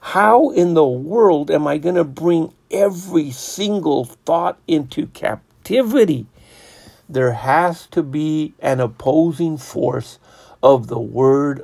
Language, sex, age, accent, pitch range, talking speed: English, male, 50-69, American, 125-155 Hz, 125 wpm